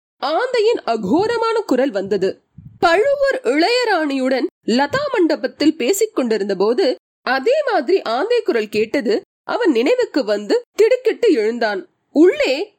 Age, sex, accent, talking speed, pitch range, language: 30-49, female, native, 100 wpm, 265-405 Hz, Tamil